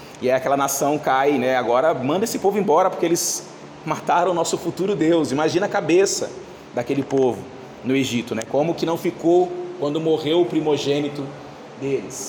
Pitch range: 150-205 Hz